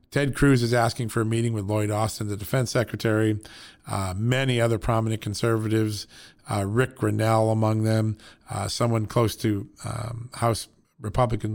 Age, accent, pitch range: 40-59, American, 110-130 Hz